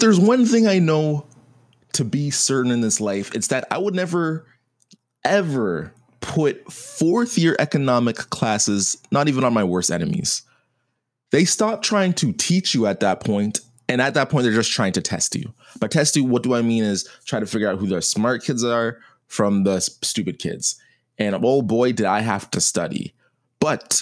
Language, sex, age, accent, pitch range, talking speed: English, male, 20-39, American, 115-170 Hz, 190 wpm